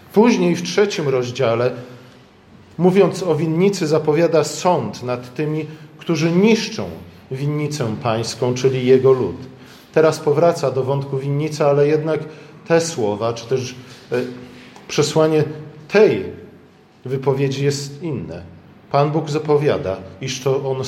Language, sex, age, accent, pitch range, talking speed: Polish, male, 40-59, native, 120-155 Hz, 115 wpm